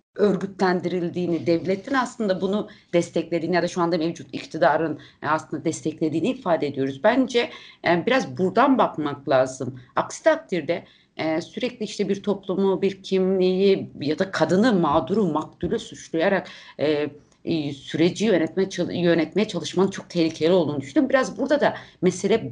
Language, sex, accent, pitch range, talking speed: Turkish, female, native, 155-195 Hz, 125 wpm